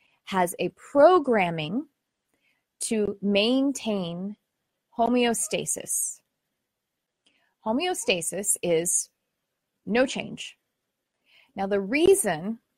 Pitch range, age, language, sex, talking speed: 185-235 Hz, 30-49, English, female, 60 wpm